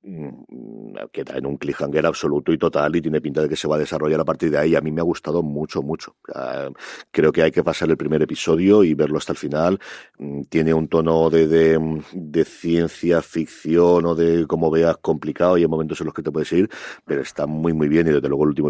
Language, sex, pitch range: Spanish, male, 80-95 Hz